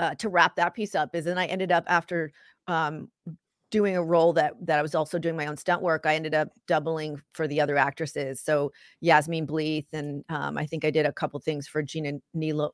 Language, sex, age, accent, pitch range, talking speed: English, female, 40-59, American, 150-180 Hz, 230 wpm